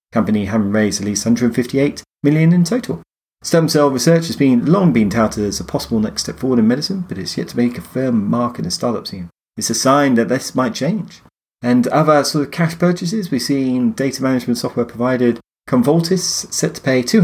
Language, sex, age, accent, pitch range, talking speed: English, male, 30-49, British, 110-155 Hz, 210 wpm